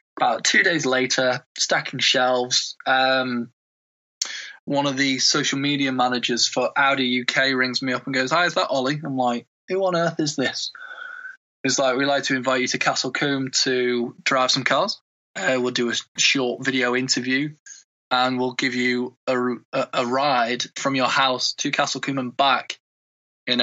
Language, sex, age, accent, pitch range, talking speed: English, male, 20-39, British, 125-155 Hz, 175 wpm